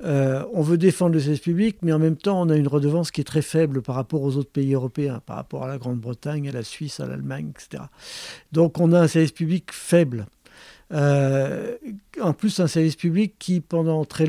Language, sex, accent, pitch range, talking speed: French, male, French, 140-170 Hz, 225 wpm